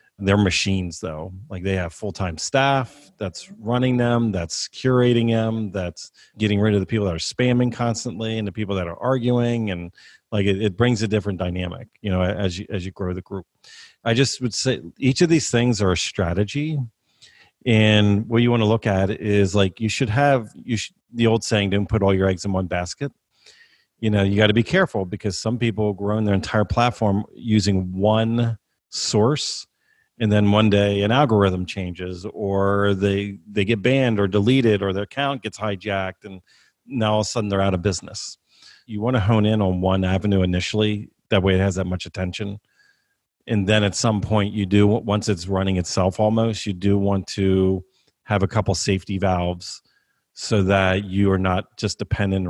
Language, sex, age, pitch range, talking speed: English, male, 40-59, 95-115 Hz, 195 wpm